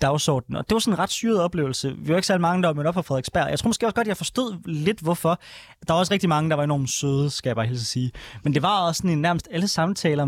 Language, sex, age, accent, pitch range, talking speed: Danish, male, 20-39, native, 140-170 Hz, 300 wpm